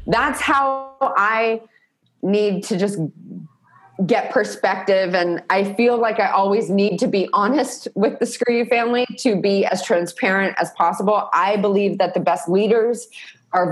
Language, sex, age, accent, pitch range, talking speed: English, female, 20-39, American, 170-210 Hz, 160 wpm